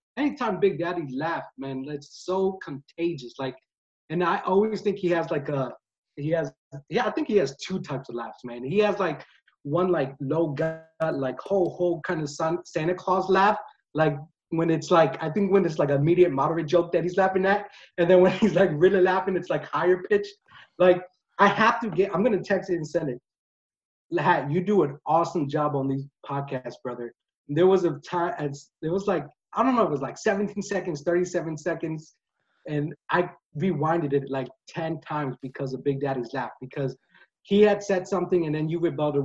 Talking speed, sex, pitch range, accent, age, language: 200 wpm, male, 145-185 Hz, American, 30-49, English